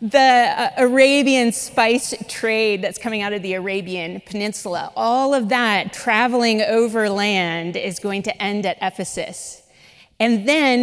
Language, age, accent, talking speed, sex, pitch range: English, 30-49, American, 145 wpm, female, 195-235 Hz